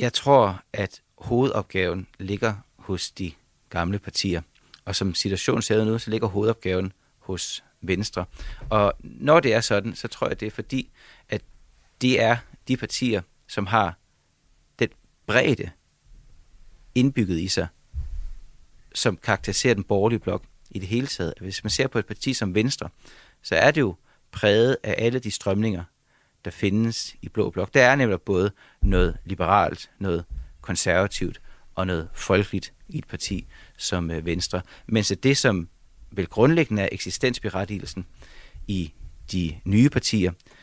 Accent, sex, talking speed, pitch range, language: native, male, 150 wpm, 90-115 Hz, Danish